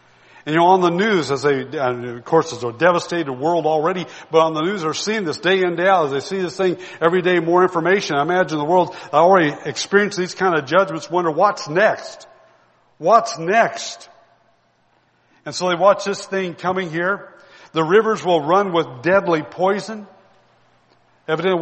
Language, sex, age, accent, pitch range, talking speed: English, male, 60-79, American, 165-200 Hz, 185 wpm